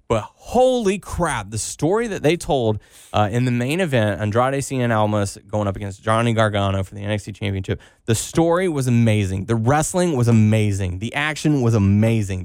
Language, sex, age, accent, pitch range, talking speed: English, male, 20-39, American, 105-140 Hz, 180 wpm